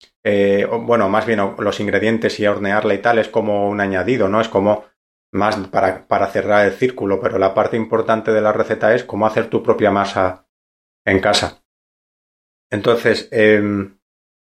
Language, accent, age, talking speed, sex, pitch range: Spanish, Spanish, 30-49, 165 wpm, male, 95-110 Hz